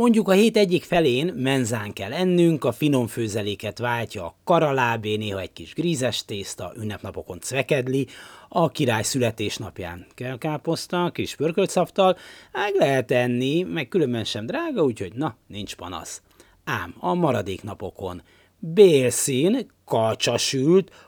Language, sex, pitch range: Hungarian, male, 105-175 Hz